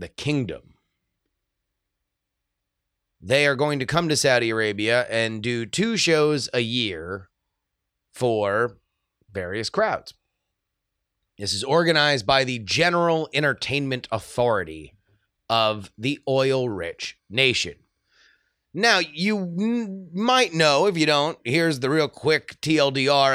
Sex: male